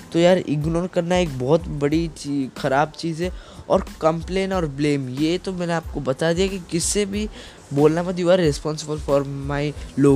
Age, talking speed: 10-29, 175 wpm